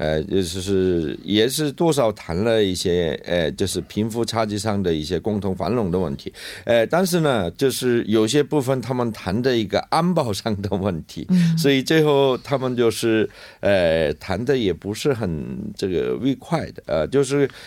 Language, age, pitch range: Korean, 50-69, 100-145 Hz